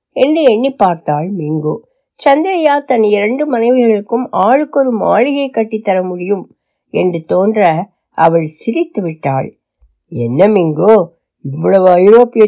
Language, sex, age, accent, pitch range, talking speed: Tamil, female, 60-79, native, 165-250 Hz, 100 wpm